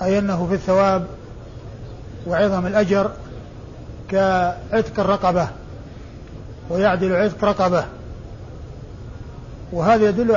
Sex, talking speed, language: male, 75 wpm, Arabic